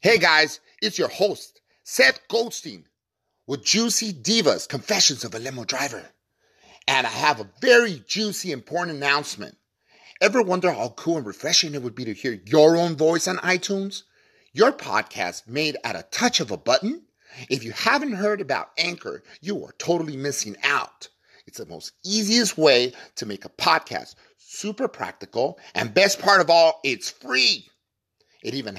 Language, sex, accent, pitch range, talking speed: English, male, American, 130-210 Hz, 165 wpm